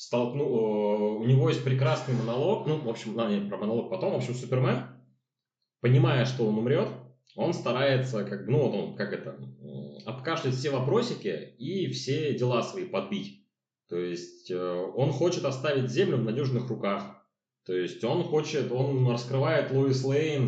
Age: 20-39